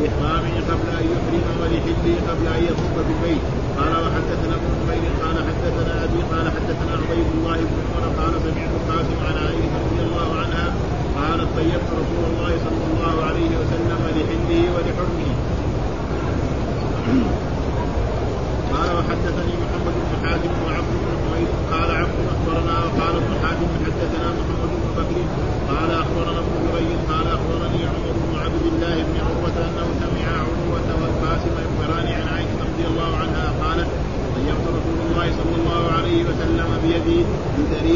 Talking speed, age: 75 wpm, 30-49